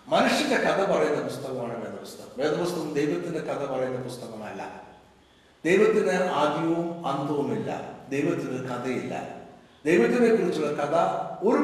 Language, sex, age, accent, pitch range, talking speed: Malayalam, male, 60-79, native, 140-195 Hz, 105 wpm